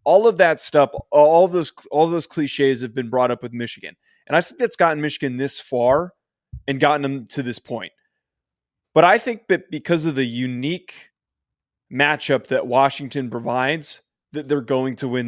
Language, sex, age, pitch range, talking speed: English, male, 20-39, 130-165 Hz, 190 wpm